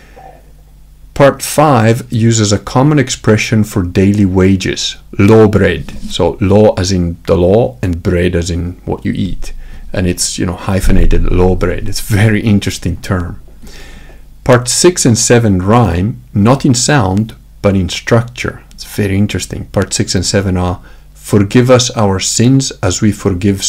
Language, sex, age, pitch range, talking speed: English, male, 50-69, 95-120 Hz, 155 wpm